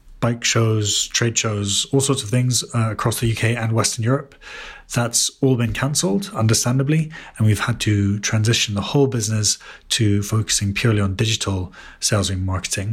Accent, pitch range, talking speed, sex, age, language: British, 105-120 Hz, 165 wpm, male, 30-49, English